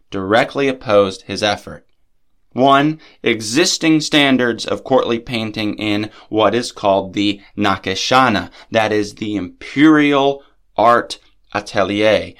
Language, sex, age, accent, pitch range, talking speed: English, male, 20-39, American, 100-135 Hz, 105 wpm